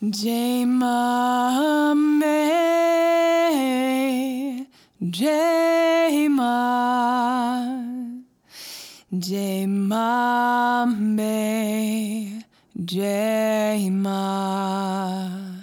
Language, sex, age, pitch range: English, female, 20-39, 200-275 Hz